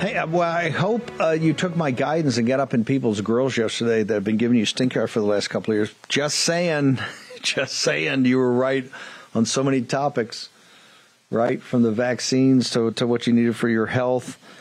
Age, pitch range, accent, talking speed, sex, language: 50-69, 115-135 Hz, American, 210 wpm, male, English